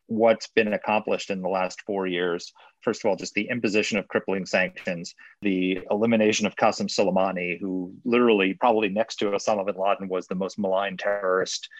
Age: 30-49